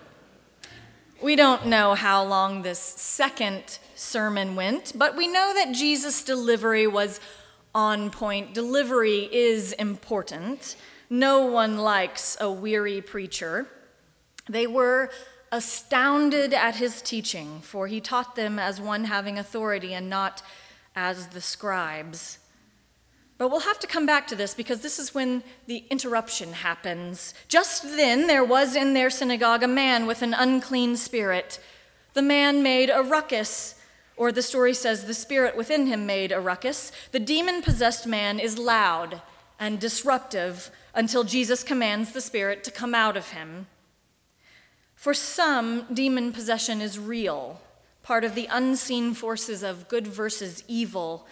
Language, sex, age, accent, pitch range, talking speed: English, female, 30-49, American, 205-260 Hz, 145 wpm